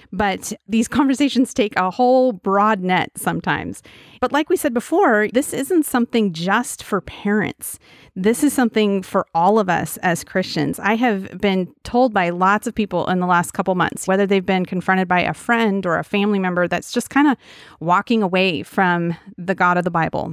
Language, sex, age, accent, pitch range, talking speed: English, female, 30-49, American, 185-225 Hz, 190 wpm